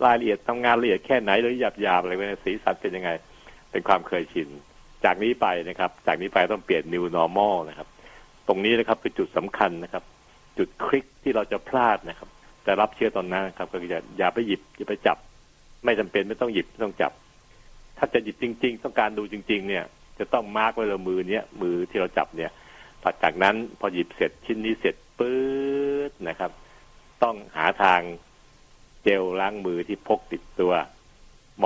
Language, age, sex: Thai, 60-79, male